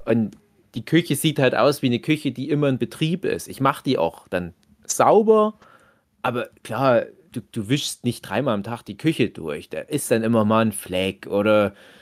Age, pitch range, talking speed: 30-49, 110-135 Hz, 200 wpm